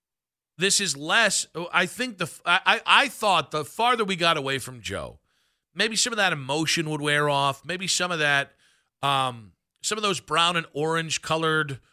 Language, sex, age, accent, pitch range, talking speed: English, male, 40-59, American, 125-160 Hz, 190 wpm